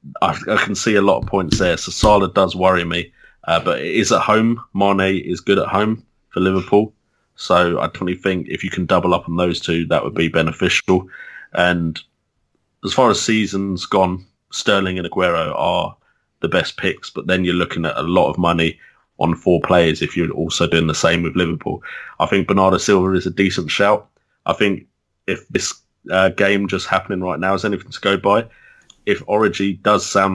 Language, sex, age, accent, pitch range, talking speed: English, male, 30-49, British, 90-100 Hz, 205 wpm